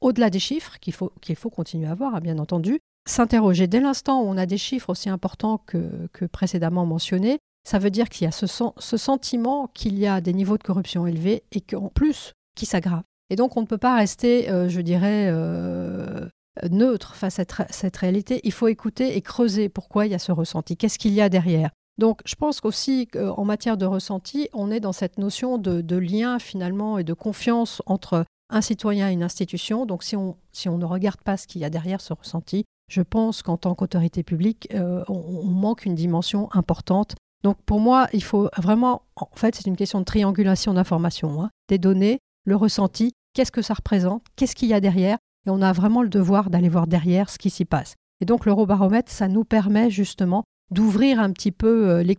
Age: 50-69